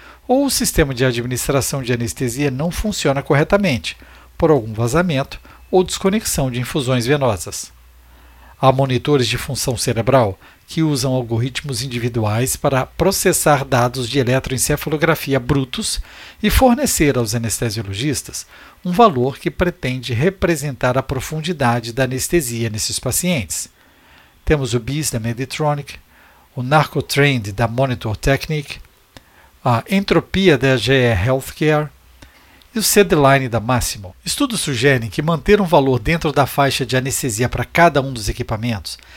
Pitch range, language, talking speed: 120-150 Hz, Portuguese, 130 wpm